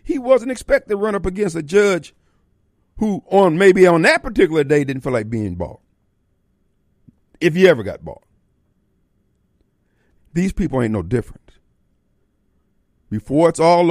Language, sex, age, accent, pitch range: Japanese, male, 50-69, American, 105-160 Hz